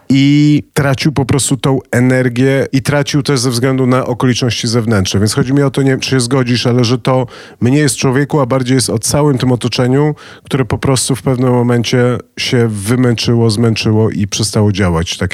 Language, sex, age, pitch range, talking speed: Polish, male, 40-59, 100-130 Hz, 195 wpm